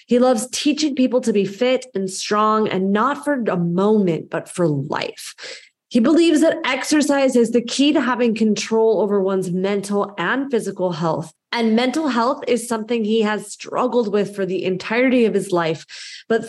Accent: American